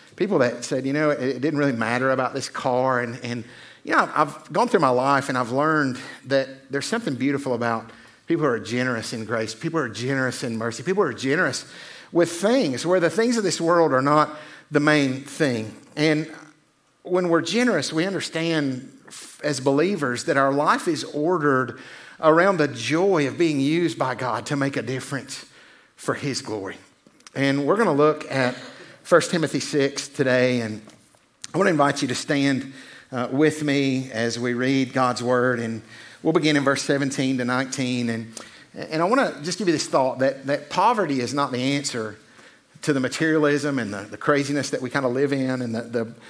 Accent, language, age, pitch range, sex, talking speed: American, English, 50-69, 125-150 Hz, male, 200 wpm